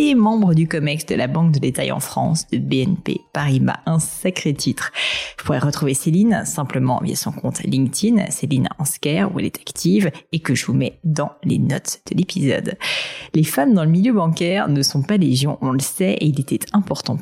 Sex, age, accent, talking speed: female, 30-49, French, 205 wpm